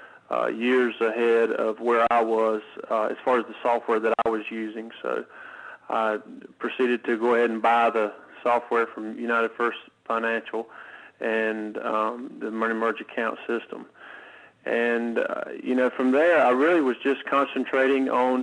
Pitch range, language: 115-130 Hz, English